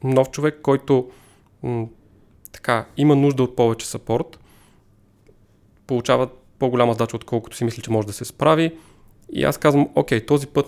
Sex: male